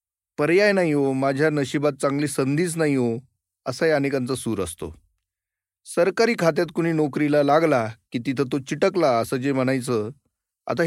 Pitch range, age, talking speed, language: 115-155 Hz, 40-59, 150 wpm, Marathi